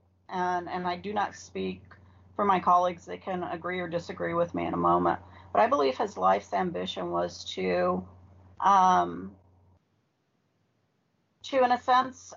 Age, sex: 40-59, female